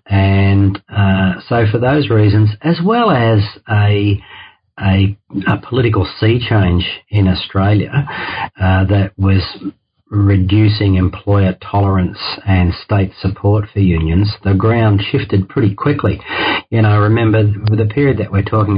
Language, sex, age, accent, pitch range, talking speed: English, male, 40-59, Australian, 95-105 Hz, 135 wpm